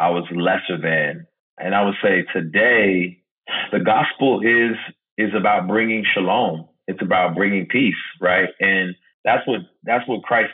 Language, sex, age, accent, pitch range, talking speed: English, male, 30-49, American, 95-115 Hz, 155 wpm